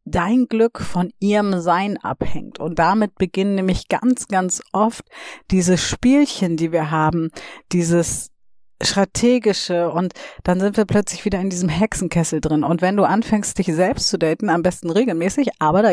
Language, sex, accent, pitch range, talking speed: German, female, German, 165-200 Hz, 160 wpm